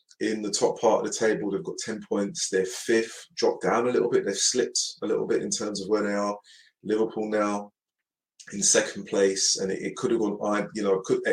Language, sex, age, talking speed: English, male, 30-49, 240 wpm